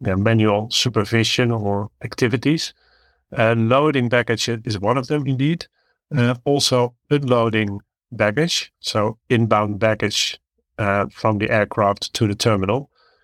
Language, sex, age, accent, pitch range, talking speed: English, male, 50-69, Dutch, 105-125 Hz, 120 wpm